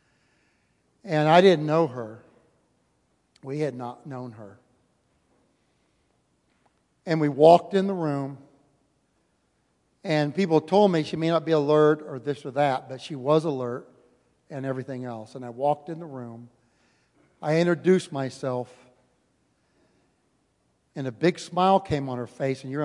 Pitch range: 125-160 Hz